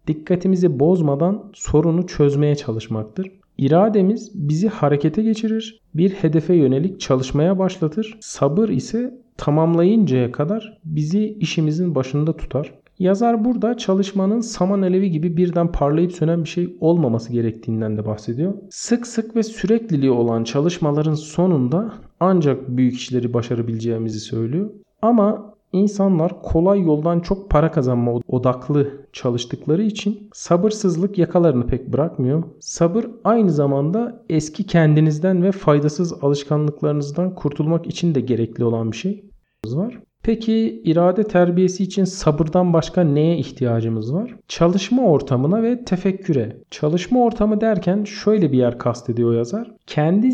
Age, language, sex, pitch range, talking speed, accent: 40-59, Turkish, male, 140-190 Hz, 120 wpm, native